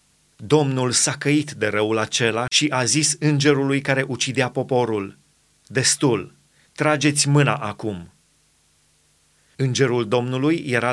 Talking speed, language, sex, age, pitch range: 110 wpm, Romanian, male, 30-49, 120-150 Hz